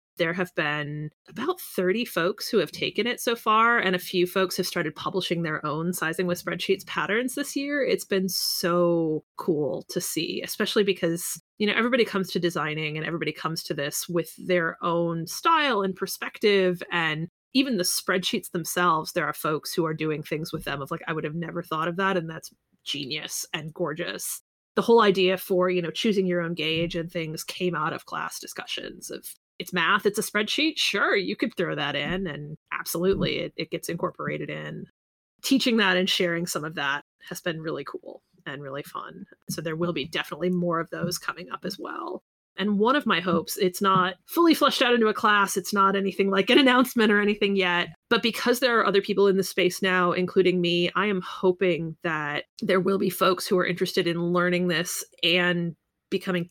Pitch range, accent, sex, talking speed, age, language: 170-200 Hz, American, female, 205 wpm, 30-49, English